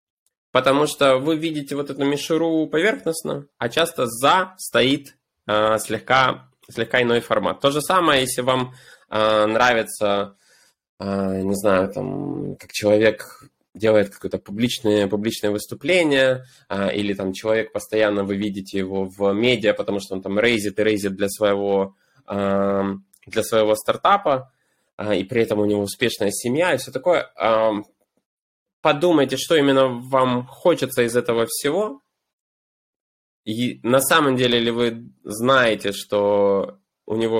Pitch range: 100-130 Hz